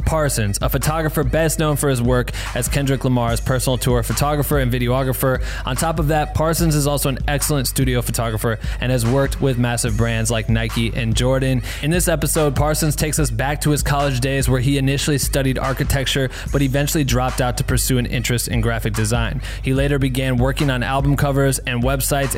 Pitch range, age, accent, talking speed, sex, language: 120-145 Hz, 20-39, American, 195 wpm, male, English